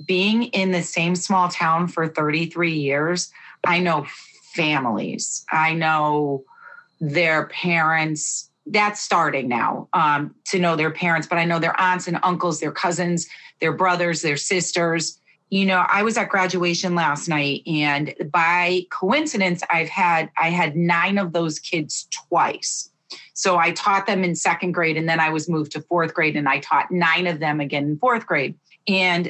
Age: 40-59